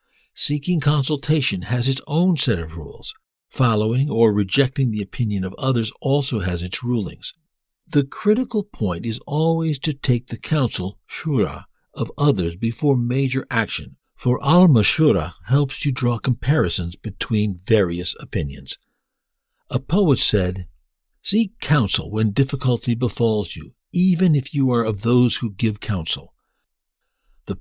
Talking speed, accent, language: 135 wpm, American, English